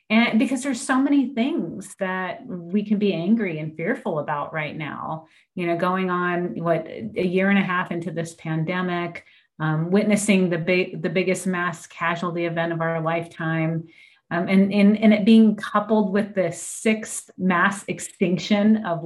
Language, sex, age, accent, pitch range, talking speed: English, female, 30-49, American, 175-210 Hz, 170 wpm